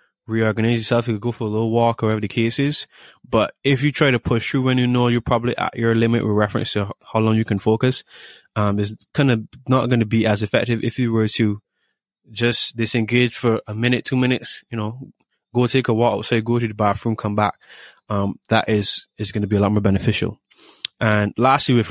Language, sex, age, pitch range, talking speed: English, male, 20-39, 105-125 Hz, 235 wpm